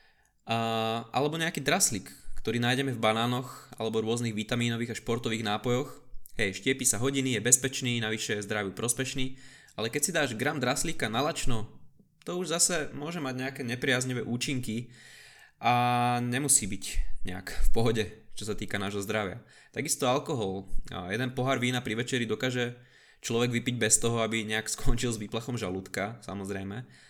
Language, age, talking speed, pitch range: Slovak, 20-39, 155 wpm, 110-130 Hz